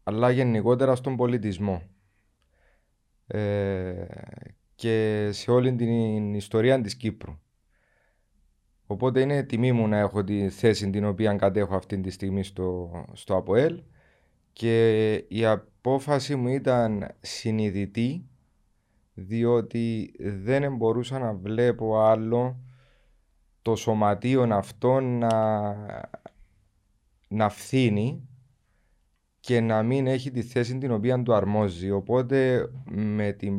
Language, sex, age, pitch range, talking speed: Greek, male, 30-49, 100-125 Hz, 105 wpm